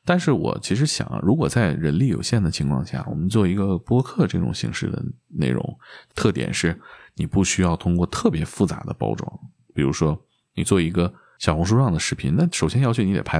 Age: 20-39